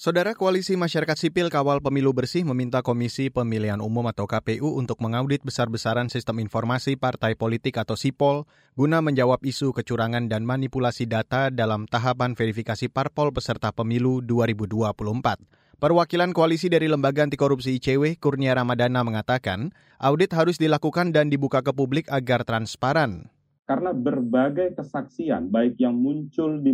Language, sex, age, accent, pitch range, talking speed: Indonesian, male, 30-49, native, 120-160 Hz, 135 wpm